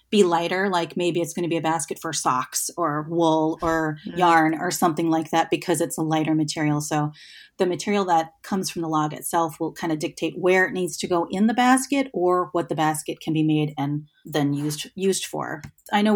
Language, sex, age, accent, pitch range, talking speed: English, female, 30-49, American, 155-190 Hz, 225 wpm